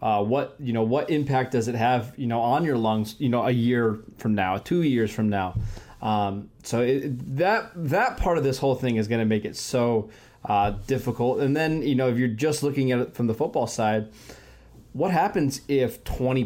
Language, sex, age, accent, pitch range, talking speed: English, male, 20-39, American, 110-135 Hz, 215 wpm